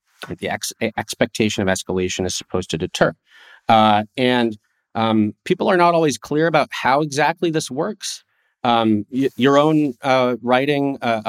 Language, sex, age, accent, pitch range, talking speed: English, male, 30-49, American, 105-130 Hz, 155 wpm